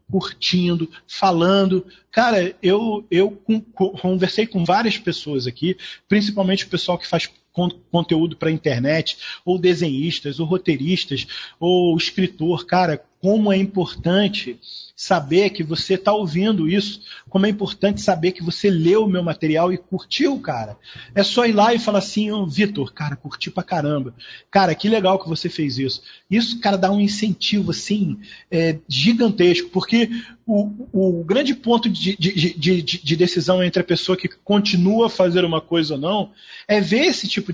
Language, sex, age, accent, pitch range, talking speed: Portuguese, male, 40-59, Brazilian, 165-200 Hz, 165 wpm